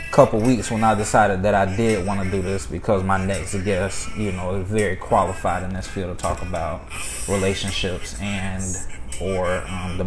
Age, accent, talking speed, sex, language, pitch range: 20-39, American, 190 wpm, male, English, 95-110 Hz